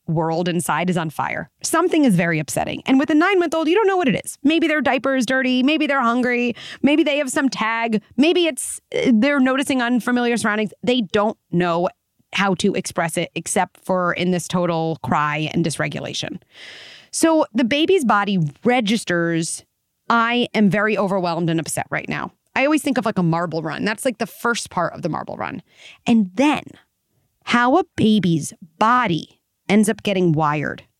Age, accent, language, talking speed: 30-49, American, English, 180 wpm